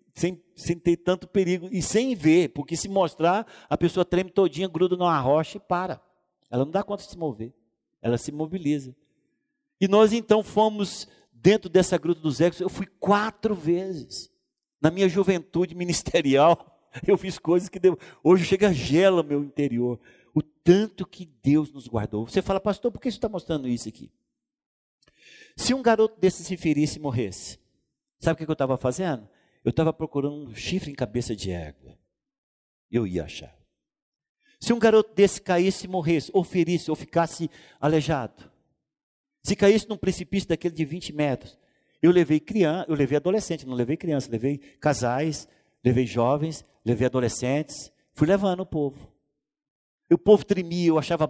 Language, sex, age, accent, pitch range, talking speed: Portuguese, male, 50-69, Brazilian, 140-190 Hz, 170 wpm